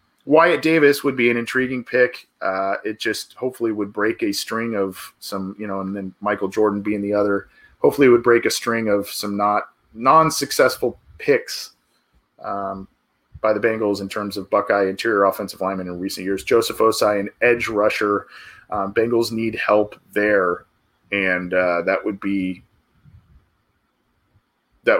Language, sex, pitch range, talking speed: English, male, 100-130 Hz, 165 wpm